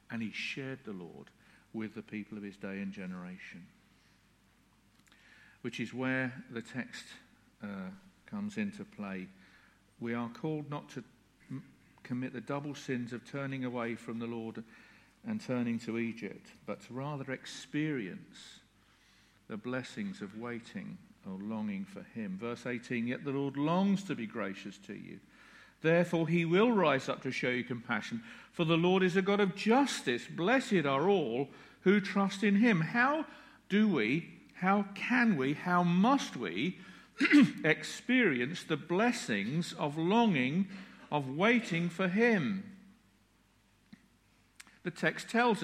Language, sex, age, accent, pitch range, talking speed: English, male, 50-69, British, 130-205 Hz, 145 wpm